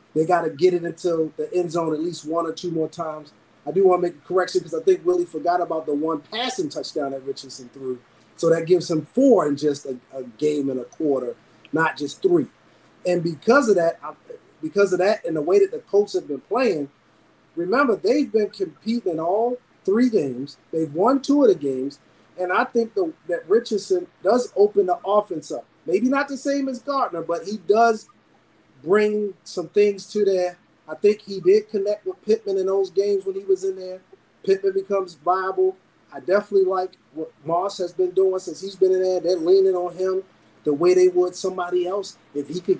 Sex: male